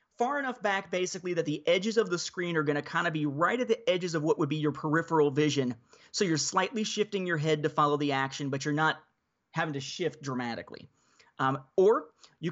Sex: male